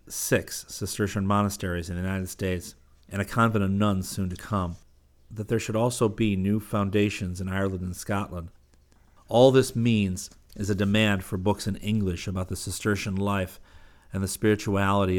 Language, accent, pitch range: English, American, 90-105 Hz